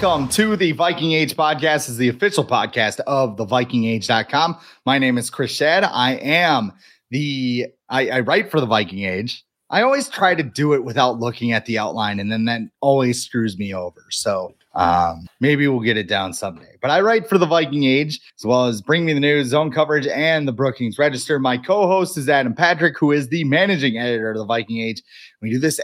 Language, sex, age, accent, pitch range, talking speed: English, male, 30-49, American, 120-170 Hz, 215 wpm